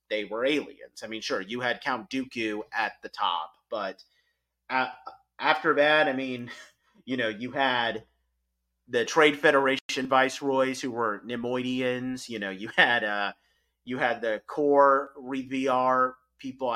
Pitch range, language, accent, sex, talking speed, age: 110-145 Hz, English, American, male, 150 wpm, 30-49